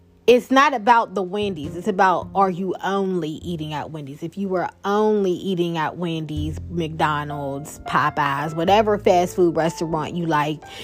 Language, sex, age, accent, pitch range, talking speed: English, female, 20-39, American, 190-245 Hz, 155 wpm